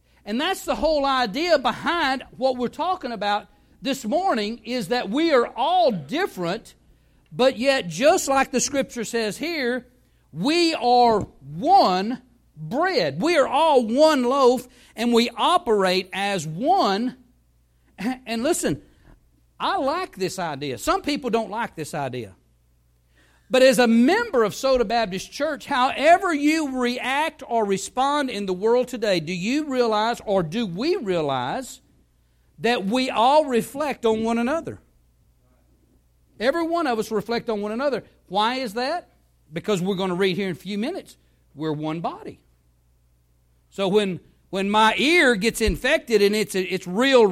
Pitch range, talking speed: 190-265 Hz, 150 wpm